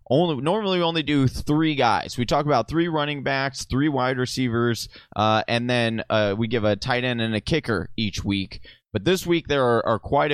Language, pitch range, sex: English, 110-145 Hz, male